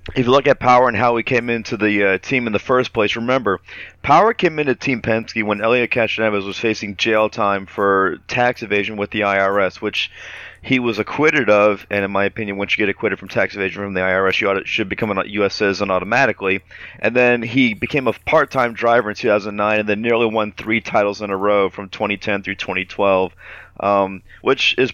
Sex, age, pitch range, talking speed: male, 30-49, 100-120 Hz, 215 wpm